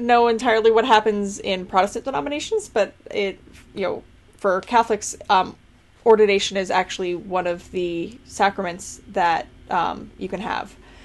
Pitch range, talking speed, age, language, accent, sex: 175-200 Hz, 140 wpm, 10-29, English, American, female